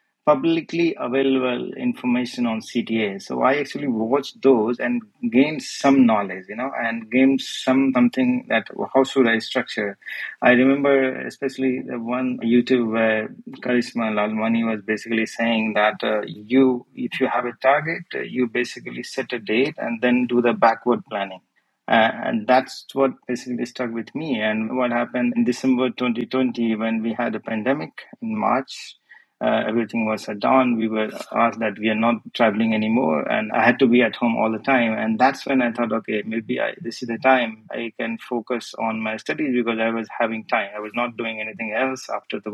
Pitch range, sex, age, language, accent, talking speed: 110-130 Hz, male, 30-49, English, Indian, 190 wpm